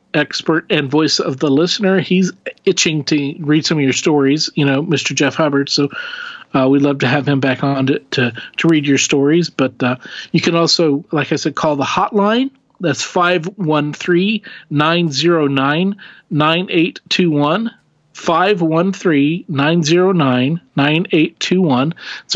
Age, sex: 40-59, male